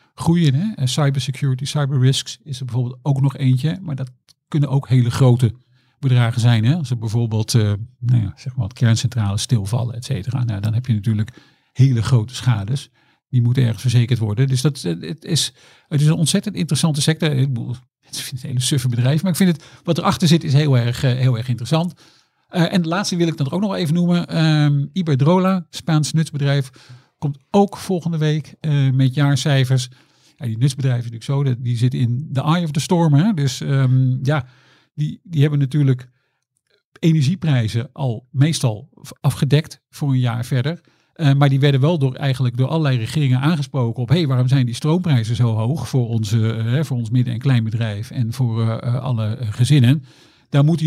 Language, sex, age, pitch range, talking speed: Dutch, male, 50-69, 125-155 Hz, 185 wpm